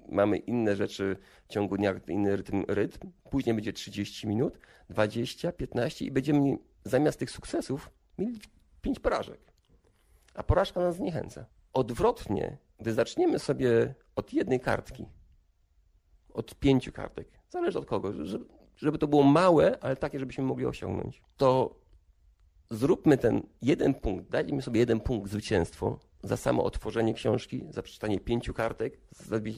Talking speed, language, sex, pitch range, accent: 140 wpm, Polish, male, 95-130 Hz, native